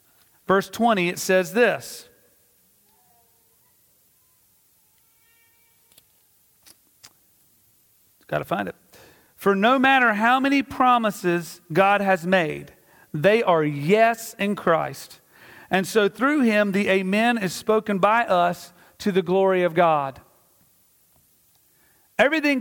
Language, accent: English, American